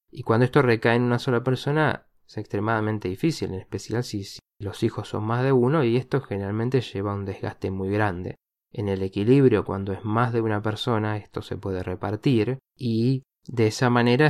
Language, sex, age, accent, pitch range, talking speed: Spanish, male, 20-39, Argentinian, 95-115 Hz, 195 wpm